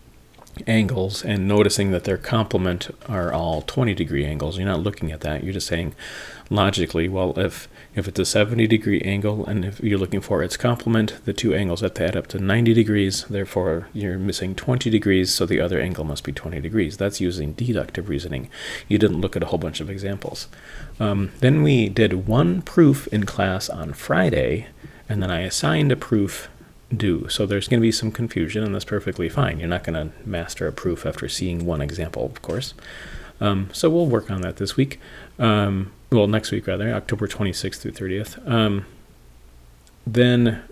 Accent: American